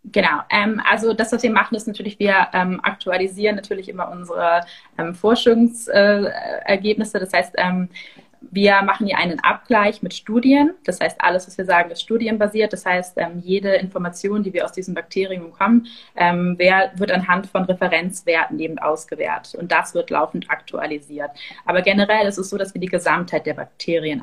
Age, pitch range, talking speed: 20-39, 175-205 Hz, 170 wpm